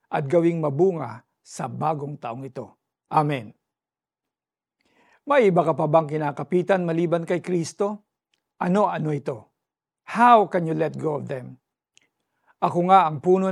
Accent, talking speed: native, 135 wpm